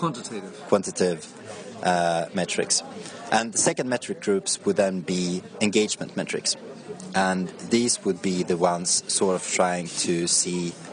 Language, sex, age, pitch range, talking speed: English, male, 30-49, 85-100 Hz, 135 wpm